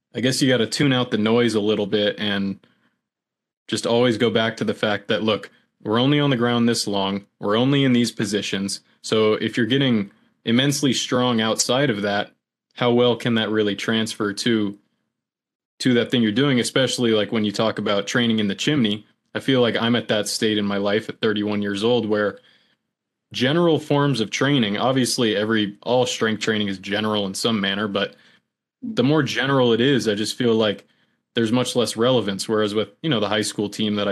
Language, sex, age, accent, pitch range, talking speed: English, male, 20-39, American, 105-125 Hz, 205 wpm